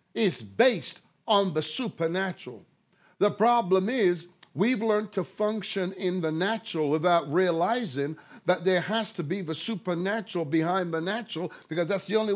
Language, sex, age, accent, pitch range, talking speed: English, male, 50-69, American, 160-210 Hz, 150 wpm